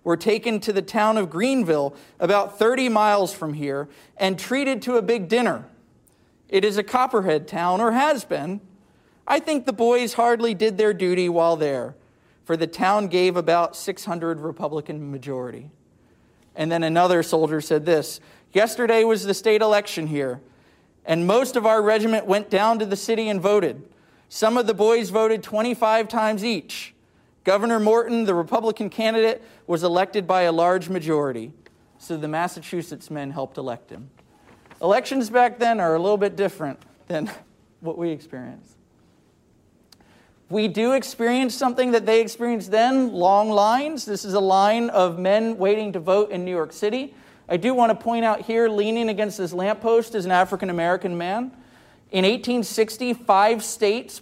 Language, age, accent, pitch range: Russian, 40-59, American, 175-225 Hz